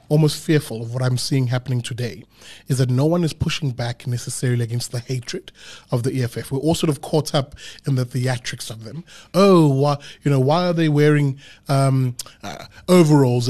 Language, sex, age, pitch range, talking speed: English, male, 20-39, 130-160 Hz, 190 wpm